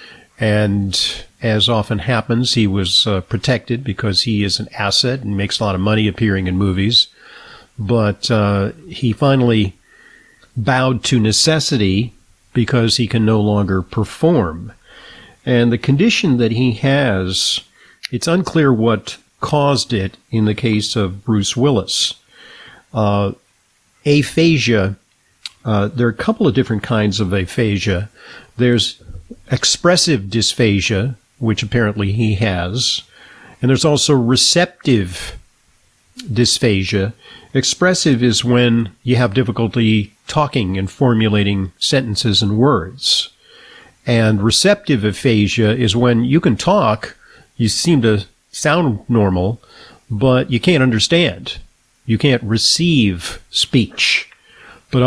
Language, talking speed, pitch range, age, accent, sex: English, 120 wpm, 105-130 Hz, 50-69, American, male